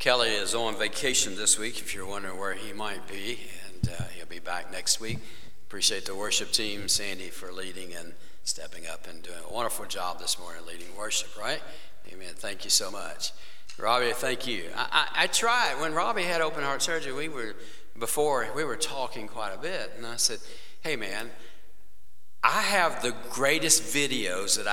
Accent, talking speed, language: American, 185 wpm, English